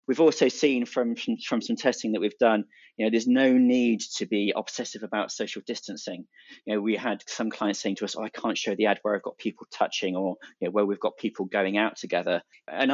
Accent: British